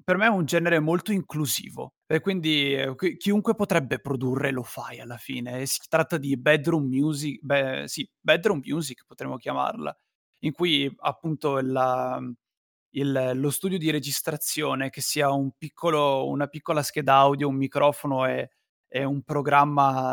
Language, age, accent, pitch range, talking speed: Italian, 20-39, native, 135-160 Hz, 150 wpm